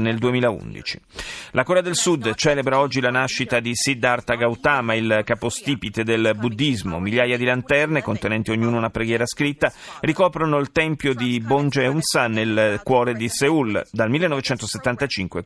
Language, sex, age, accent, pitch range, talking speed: Italian, male, 40-59, native, 115-145 Hz, 145 wpm